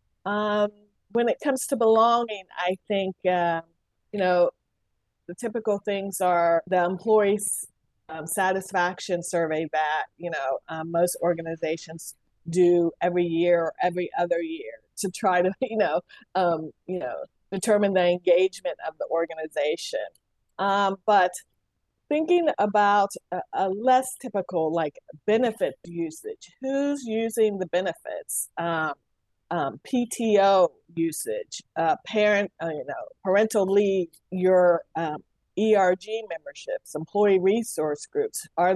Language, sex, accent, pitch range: English, female, American, 175-220 Hz